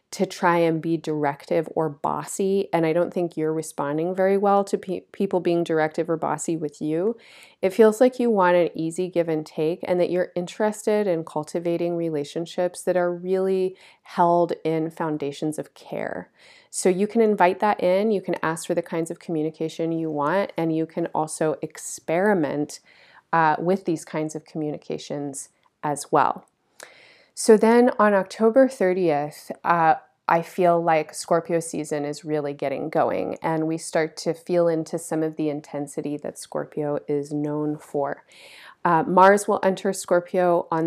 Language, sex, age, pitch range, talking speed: English, female, 30-49, 155-185 Hz, 165 wpm